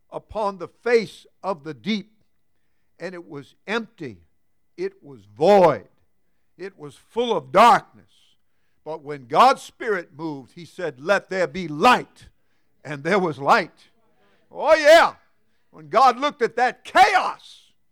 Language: English